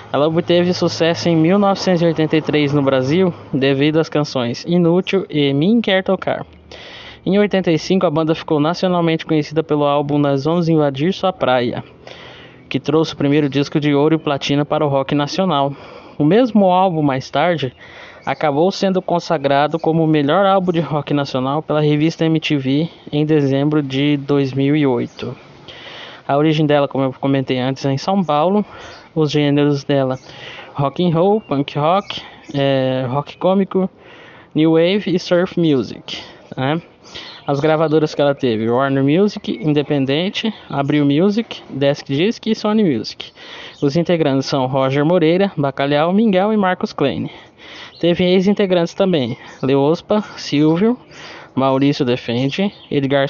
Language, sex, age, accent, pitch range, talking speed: Portuguese, male, 20-39, Brazilian, 140-175 Hz, 140 wpm